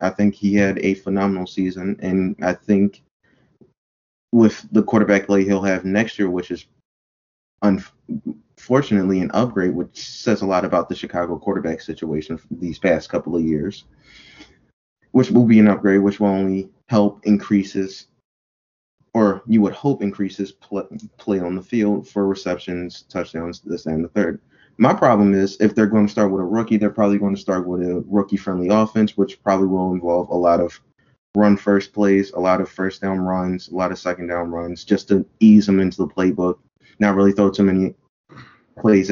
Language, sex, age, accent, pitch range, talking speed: English, male, 20-39, American, 90-105 Hz, 185 wpm